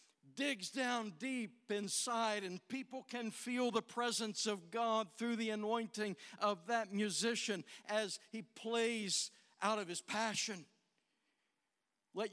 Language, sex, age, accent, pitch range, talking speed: English, male, 60-79, American, 215-250 Hz, 125 wpm